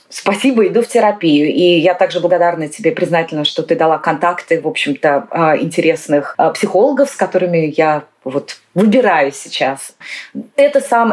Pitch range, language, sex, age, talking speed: 160-205 Hz, Russian, female, 30-49, 140 wpm